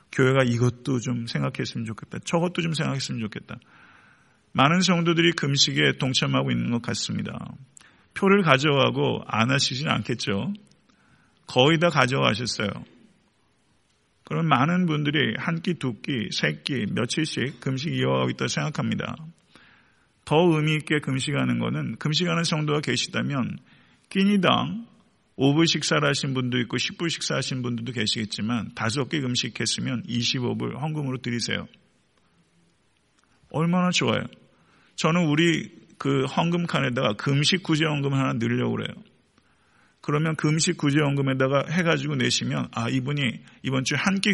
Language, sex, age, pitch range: Korean, male, 40-59, 125-170 Hz